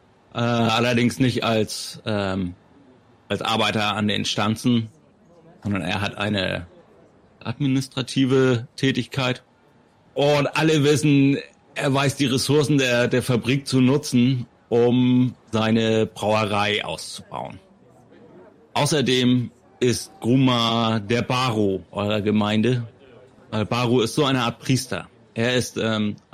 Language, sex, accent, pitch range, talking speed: German, male, German, 110-135 Hz, 110 wpm